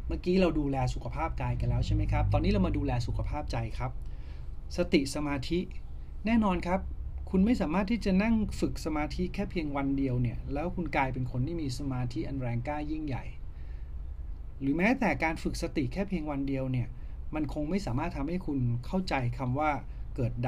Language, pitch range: Thai, 120-155 Hz